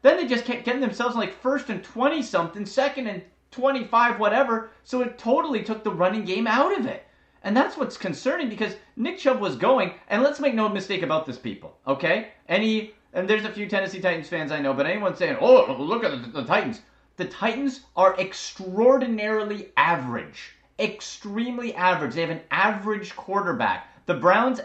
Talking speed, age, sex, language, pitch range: 180 wpm, 30-49, male, English, 175-235 Hz